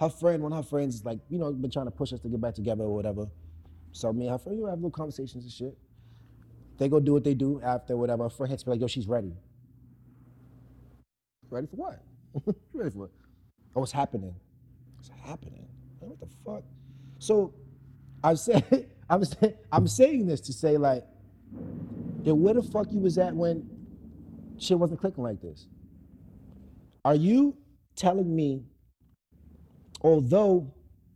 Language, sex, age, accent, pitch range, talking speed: English, male, 30-49, American, 115-170 Hz, 175 wpm